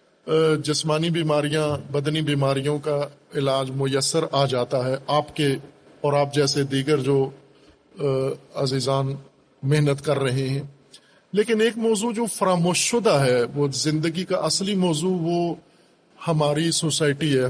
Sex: male